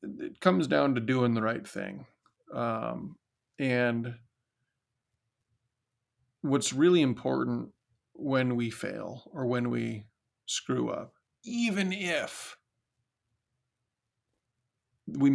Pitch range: 120-135 Hz